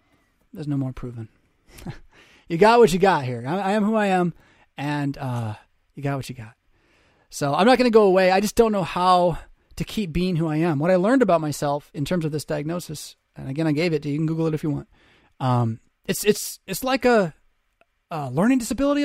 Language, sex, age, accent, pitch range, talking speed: English, male, 30-49, American, 135-205 Hz, 230 wpm